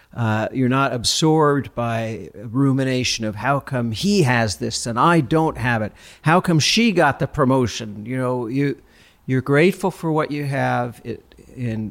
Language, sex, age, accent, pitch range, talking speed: English, male, 50-69, American, 110-140 Hz, 170 wpm